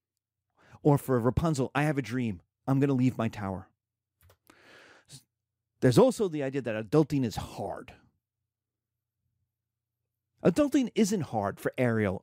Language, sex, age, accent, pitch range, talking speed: English, male, 40-59, American, 110-160 Hz, 125 wpm